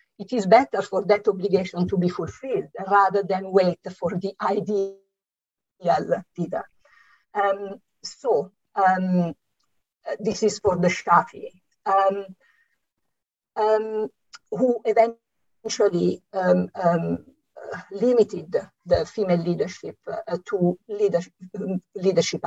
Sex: female